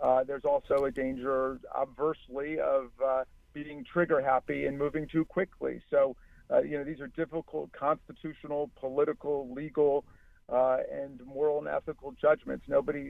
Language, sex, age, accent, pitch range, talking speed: English, male, 50-69, American, 135-165 Hz, 140 wpm